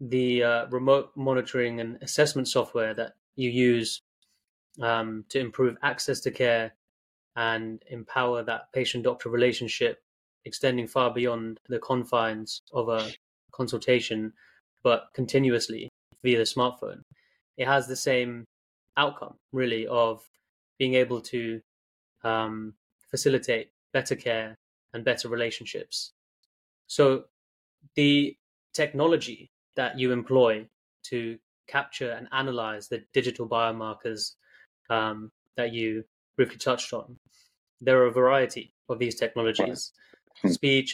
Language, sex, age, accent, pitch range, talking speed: English, male, 20-39, British, 115-130 Hz, 115 wpm